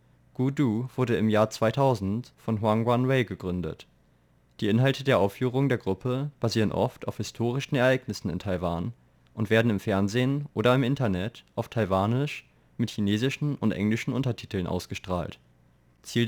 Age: 20-39